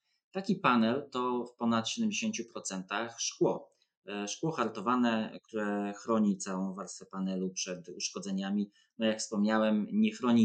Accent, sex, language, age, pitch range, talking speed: native, male, Polish, 20-39, 105-140 Hz, 120 wpm